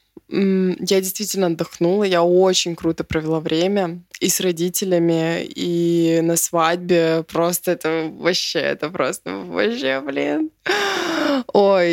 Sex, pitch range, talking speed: female, 175-205 Hz, 110 wpm